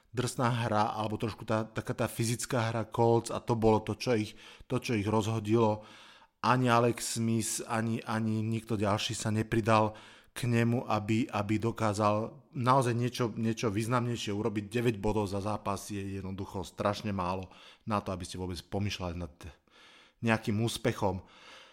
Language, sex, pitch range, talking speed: Slovak, male, 110-130 Hz, 155 wpm